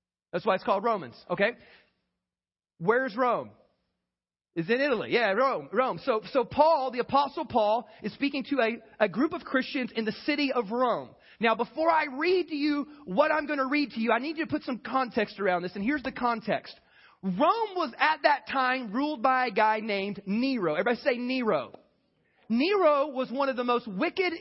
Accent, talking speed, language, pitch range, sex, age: American, 200 wpm, English, 220-290 Hz, male, 30-49